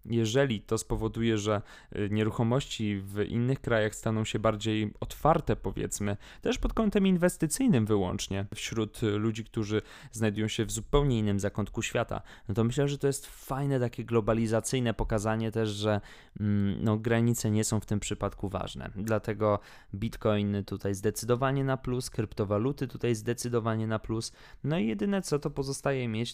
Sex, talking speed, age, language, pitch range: male, 150 wpm, 20-39, Polish, 105-130 Hz